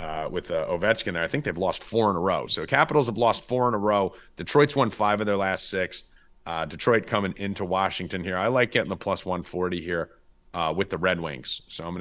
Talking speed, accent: 250 wpm, American